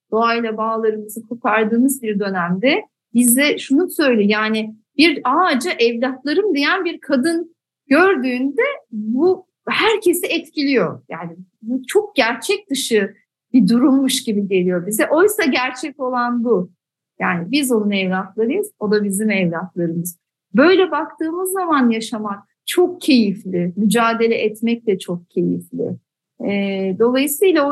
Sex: female